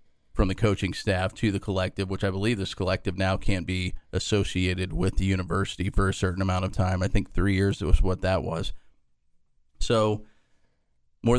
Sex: male